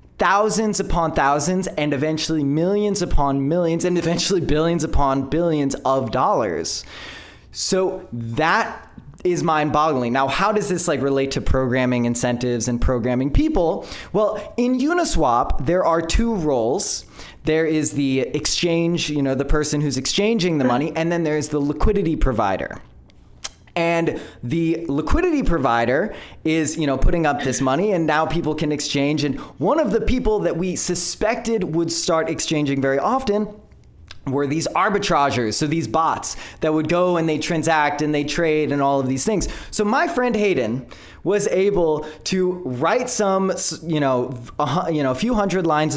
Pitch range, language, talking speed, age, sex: 140-185 Hz, English, 160 wpm, 20-39, male